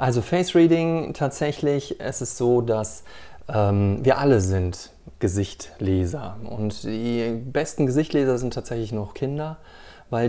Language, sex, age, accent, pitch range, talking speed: German, male, 30-49, German, 105-130 Hz, 120 wpm